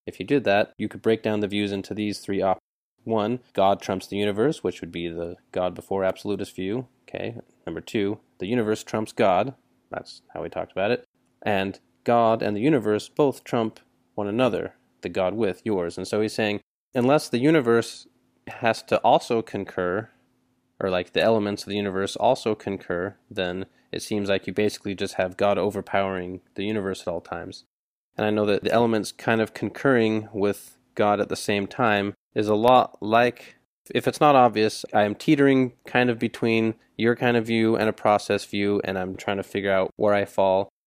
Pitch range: 95-115 Hz